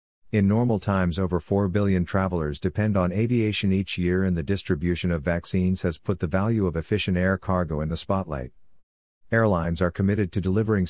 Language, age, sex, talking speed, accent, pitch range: English, 50-69, male, 180 wpm, American, 85-100 Hz